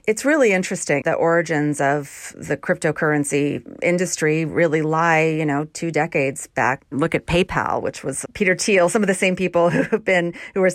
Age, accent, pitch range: 40-59, American, 145-180 Hz